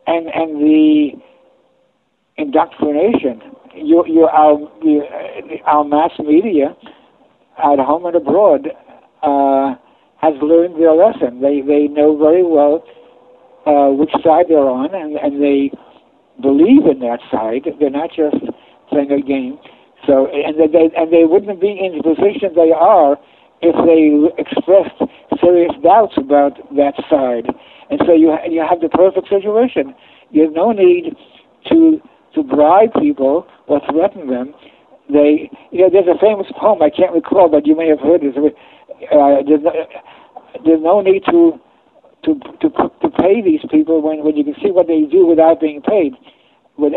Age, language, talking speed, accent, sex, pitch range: 60-79, English, 160 wpm, American, male, 150-215 Hz